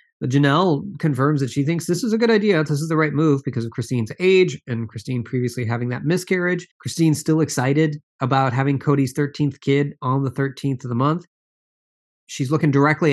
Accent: American